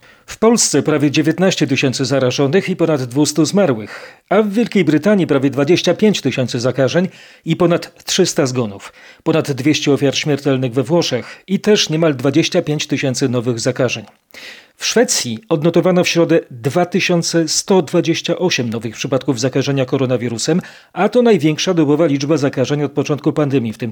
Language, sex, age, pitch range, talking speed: Polish, male, 40-59, 135-175 Hz, 140 wpm